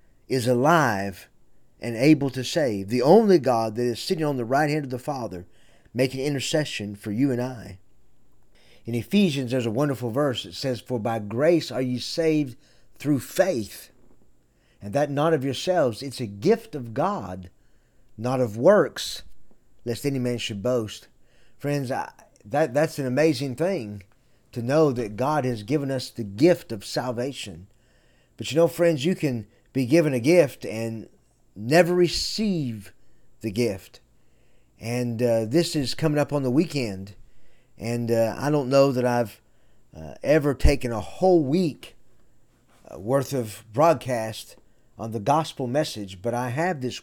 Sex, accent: male, American